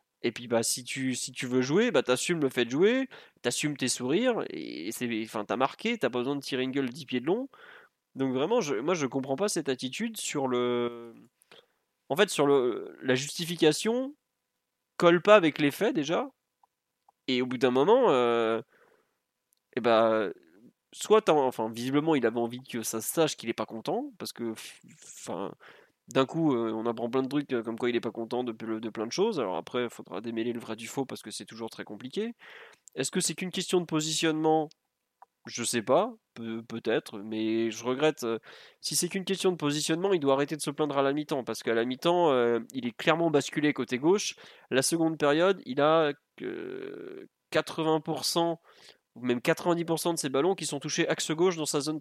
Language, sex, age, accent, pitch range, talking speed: French, male, 20-39, French, 120-170 Hz, 205 wpm